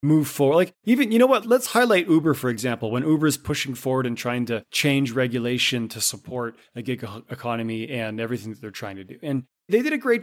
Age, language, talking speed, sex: 30-49, English, 230 wpm, male